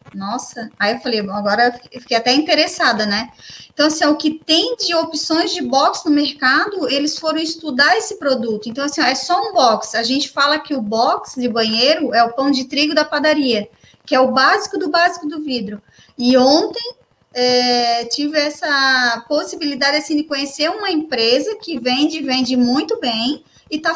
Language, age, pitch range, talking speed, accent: Portuguese, 20-39, 245-310 Hz, 185 wpm, Brazilian